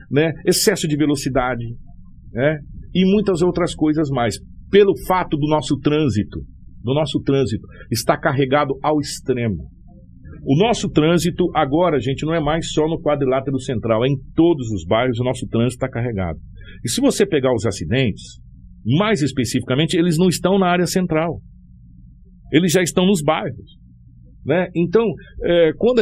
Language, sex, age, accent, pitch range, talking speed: Portuguese, male, 50-69, Brazilian, 115-175 Hz, 150 wpm